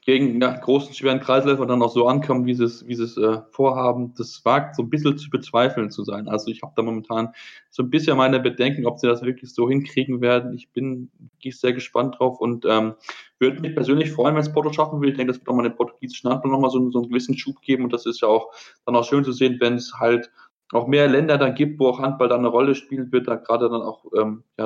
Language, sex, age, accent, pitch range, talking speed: German, male, 20-39, German, 115-130 Hz, 255 wpm